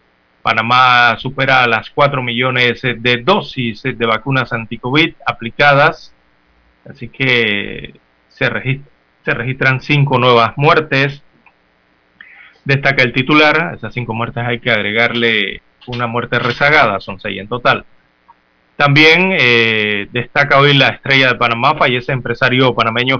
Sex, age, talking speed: male, 30-49, 125 wpm